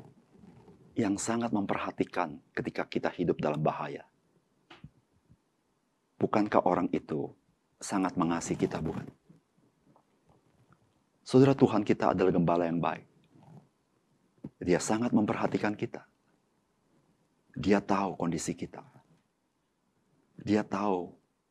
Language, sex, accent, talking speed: Indonesian, male, native, 90 wpm